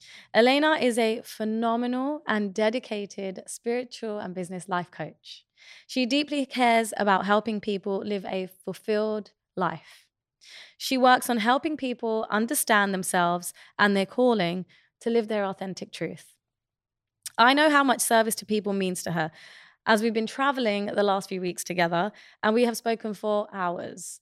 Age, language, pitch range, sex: 20-39, English, 190-230 Hz, female